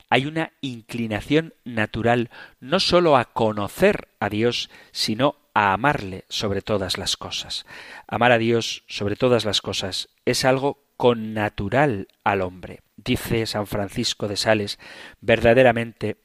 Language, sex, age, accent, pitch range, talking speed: Spanish, male, 40-59, Spanish, 105-140 Hz, 130 wpm